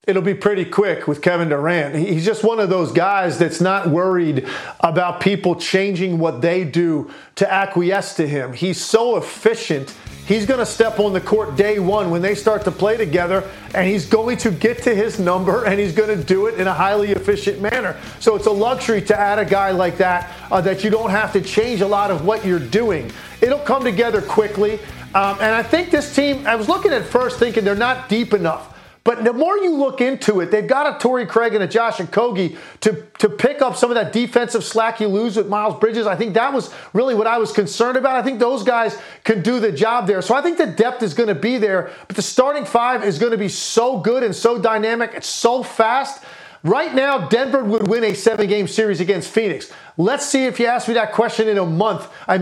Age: 40-59